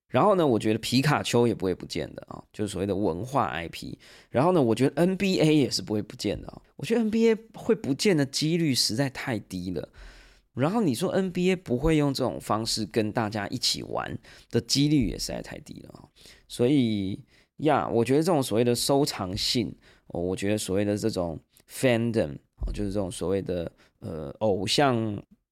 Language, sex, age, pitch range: Chinese, male, 20-39, 95-130 Hz